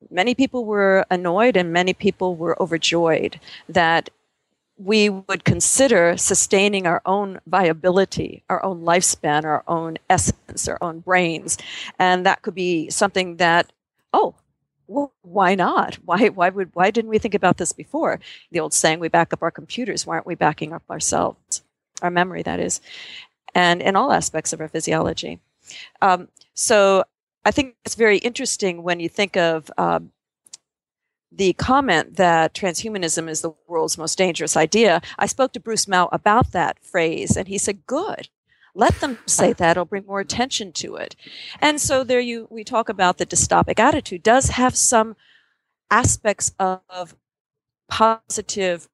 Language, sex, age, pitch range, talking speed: English, female, 50-69, 170-220 Hz, 160 wpm